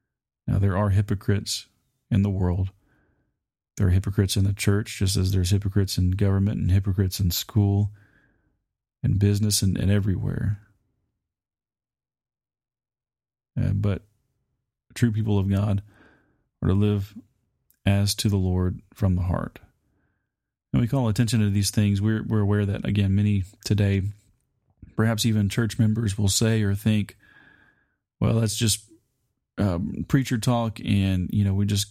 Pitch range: 95-110 Hz